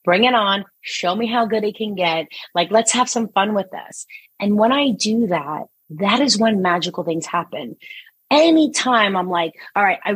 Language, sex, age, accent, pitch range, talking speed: English, female, 30-49, American, 175-220 Hz, 200 wpm